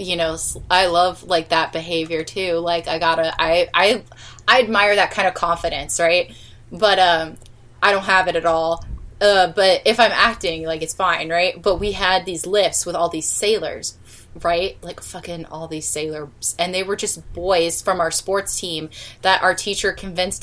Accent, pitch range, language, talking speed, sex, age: American, 165-205 Hz, English, 195 wpm, female, 20-39